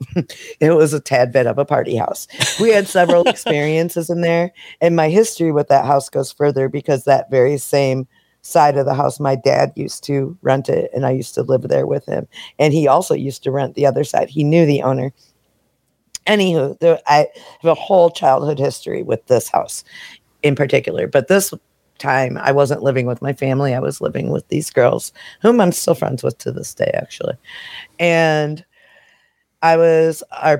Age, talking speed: 50-69, 190 wpm